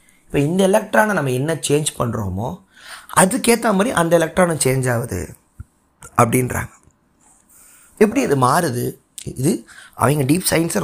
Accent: native